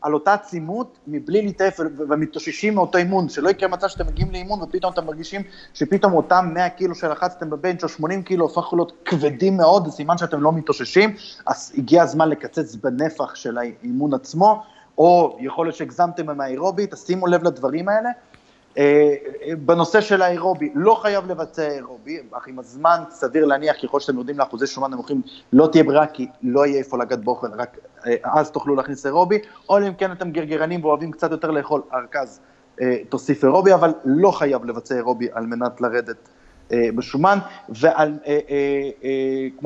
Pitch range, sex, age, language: 140-185 Hz, male, 30-49, Hebrew